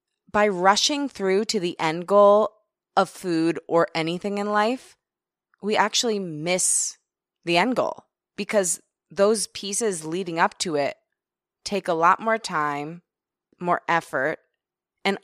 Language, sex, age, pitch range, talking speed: English, female, 20-39, 165-205 Hz, 135 wpm